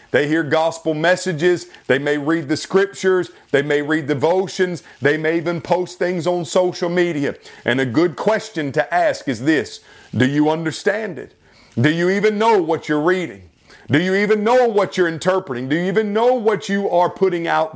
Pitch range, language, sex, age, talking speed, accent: 145-190 Hz, English, male, 40-59, 190 wpm, American